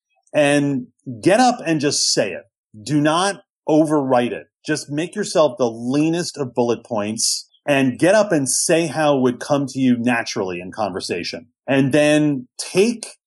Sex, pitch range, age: male, 120-150 Hz, 40-59